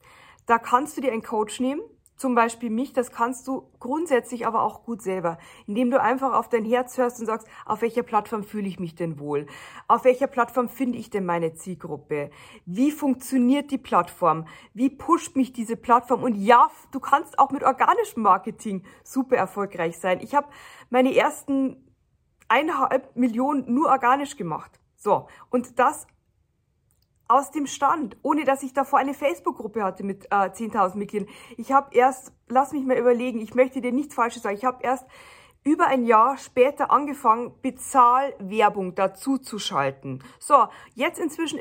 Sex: female